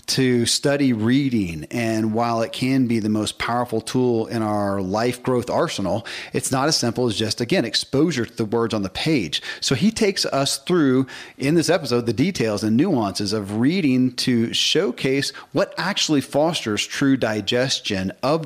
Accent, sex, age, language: American, male, 40-59, English